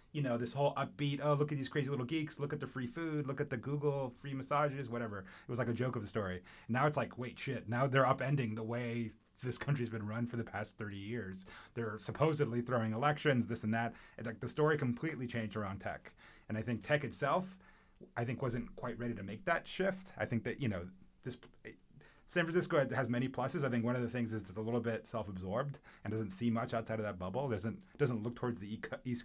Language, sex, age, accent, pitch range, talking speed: English, male, 30-49, American, 105-135 Hz, 245 wpm